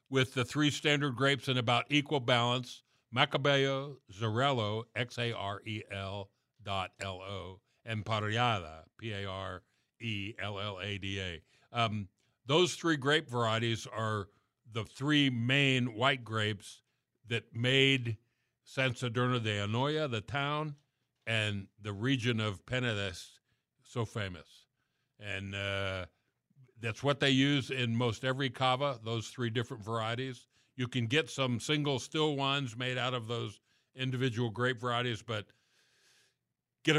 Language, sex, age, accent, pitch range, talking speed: English, male, 60-79, American, 110-135 Hz, 120 wpm